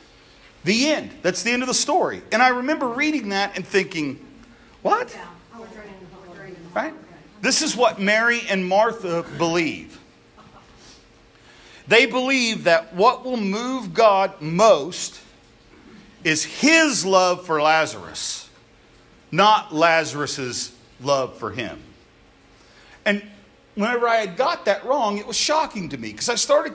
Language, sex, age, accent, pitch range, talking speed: English, male, 50-69, American, 180-245 Hz, 130 wpm